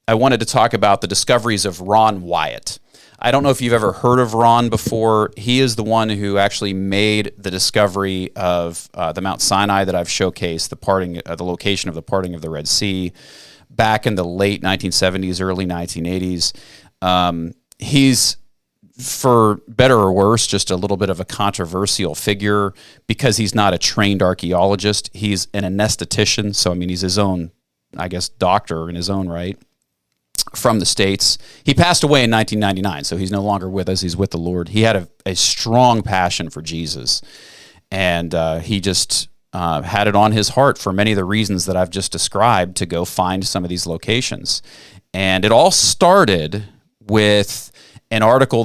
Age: 30-49